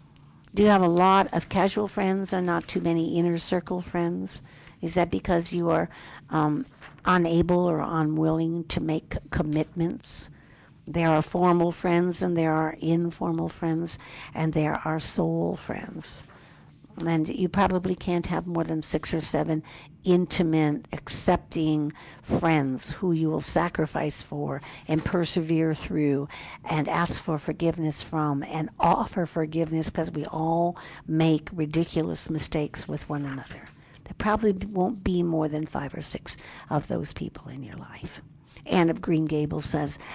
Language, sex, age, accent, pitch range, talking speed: English, female, 60-79, American, 155-190 Hz, 150 wpm